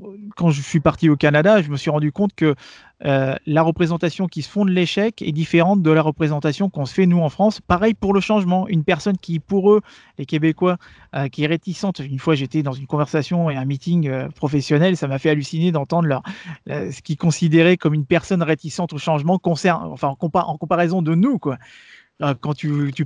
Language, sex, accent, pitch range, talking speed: French, male, French, 145-180 Hz, 220 wpm